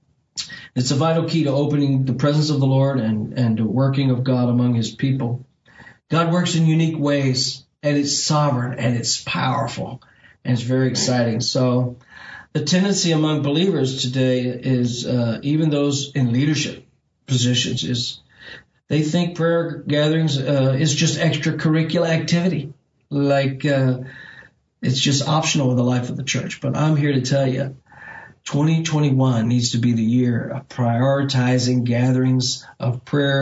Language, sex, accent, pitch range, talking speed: English, male, American, 125-145 Hz, 155 wpm